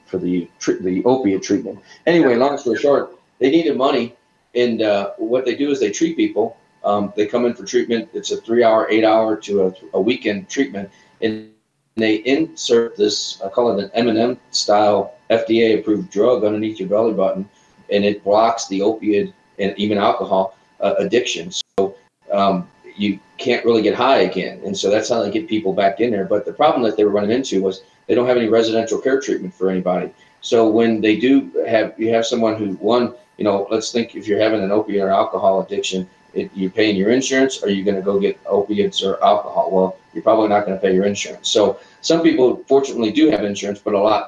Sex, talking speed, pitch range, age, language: male, 215 wpm, 100-120 Hz, 40-59, English